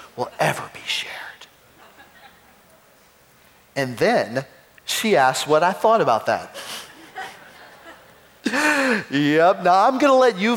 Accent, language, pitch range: American, English, 160-225 Hz